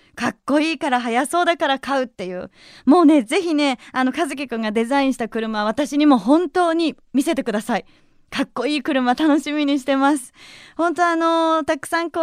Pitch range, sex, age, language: 255-325 Hz, female, 20-39, Japanese